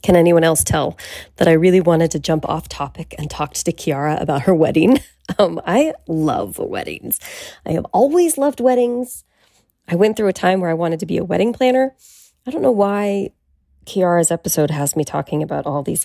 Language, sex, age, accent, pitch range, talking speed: English, female, 20-39, American, 155-215 Hz, 200 wpm